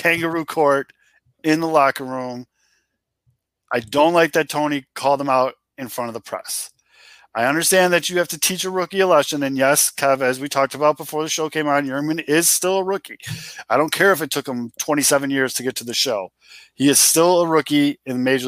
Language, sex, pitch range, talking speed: English, male, 130-155 Hz, 220 wpm